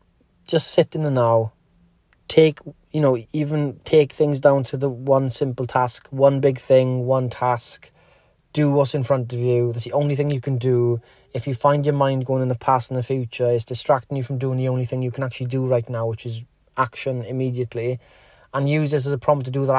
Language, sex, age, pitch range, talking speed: English, male, 30-49, 120-140 Hz, 225 wpm